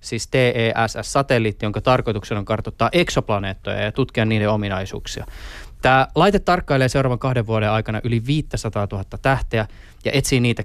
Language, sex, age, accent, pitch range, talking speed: Finnish, male, 20-39, native, 110-145 Hz, 140 wpm